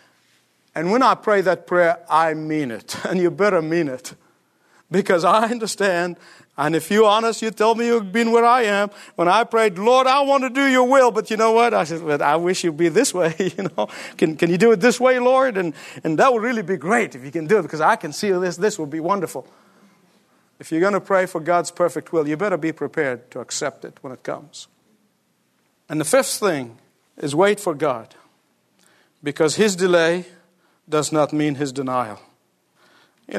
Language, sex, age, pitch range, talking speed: English, male, 50-69, 160-205 Hz, 215 wpm